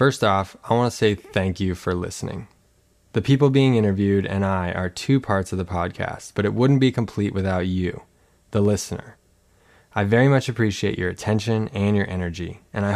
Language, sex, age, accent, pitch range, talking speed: English, male, 20-39, American, 95-115 Hz, 195 wpm